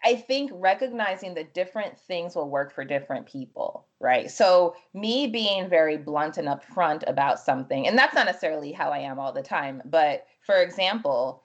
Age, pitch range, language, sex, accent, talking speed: 20-39, 145-200 Hz, English, female, American, 180 wpm